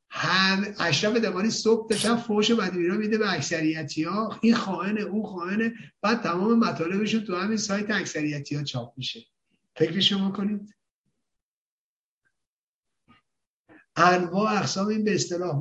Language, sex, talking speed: Persian, male, 125 wpm